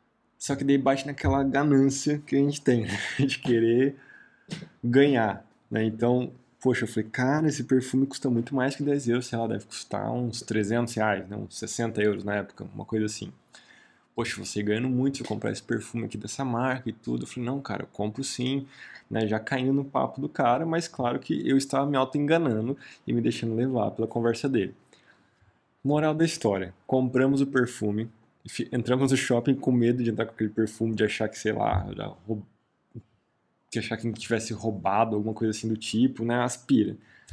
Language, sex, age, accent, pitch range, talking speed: Portuguese, male, 20-39, Brazilian, 110-135 Hz, 195 wpm